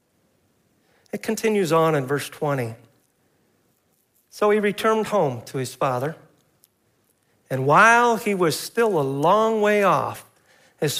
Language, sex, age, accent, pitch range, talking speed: English, male, 50-69, American, 150-225 Hz, 125 wpm